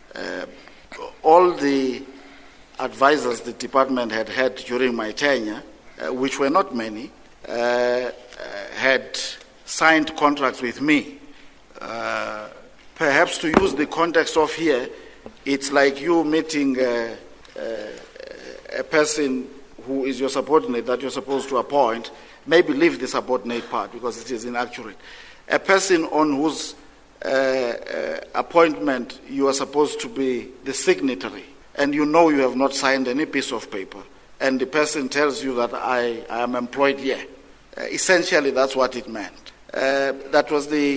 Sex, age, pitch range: male, 50-69, 130-160 Hz